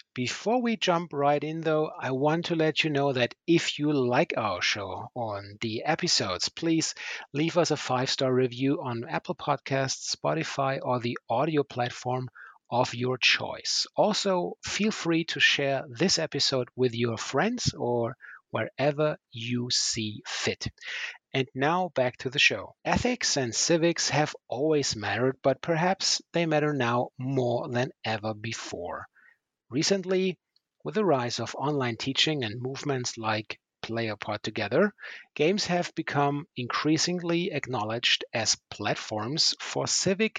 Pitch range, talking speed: 120-160 Hz, 145 wpm